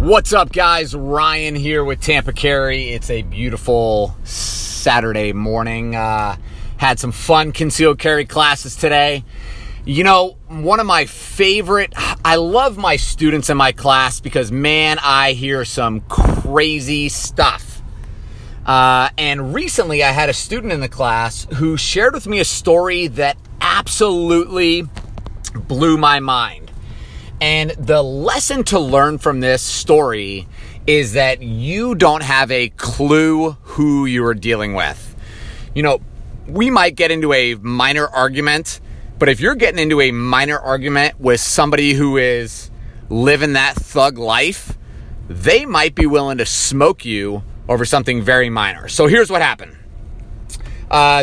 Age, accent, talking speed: 30-49, American, 145 wpm